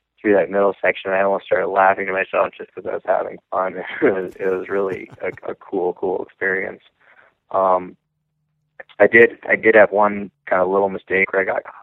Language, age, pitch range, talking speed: English, 20-39, 95-100 Hz, 205 wpm